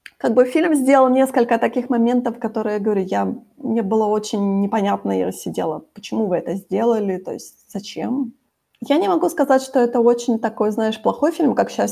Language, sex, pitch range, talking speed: Ukrainian, female, 205-245 Hz, 185 wpm